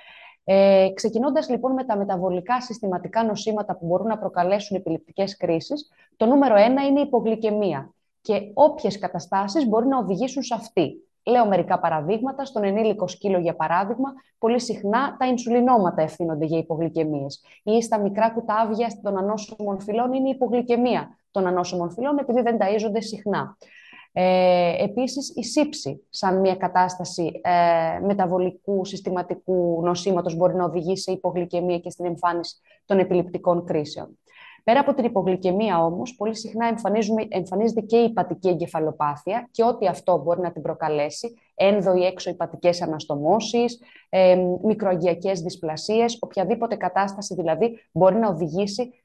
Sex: female